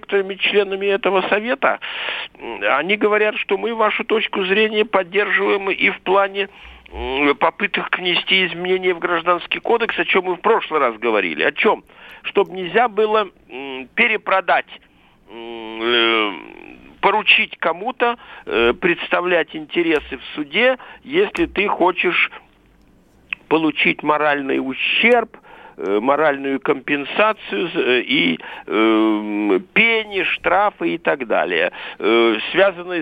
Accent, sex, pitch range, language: native, male, 150-215 Hz, Russian